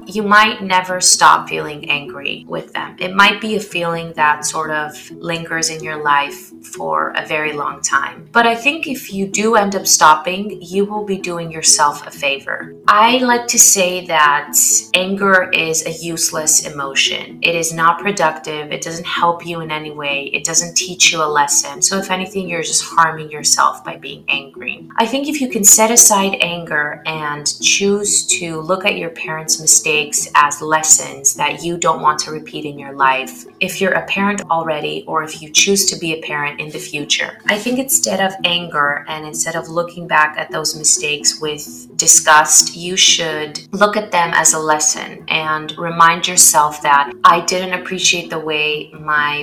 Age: 20-39